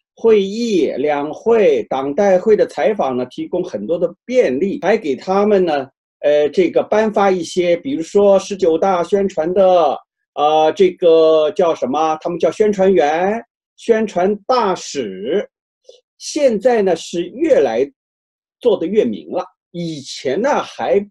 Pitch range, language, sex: 170-270 Hz, Chinese, male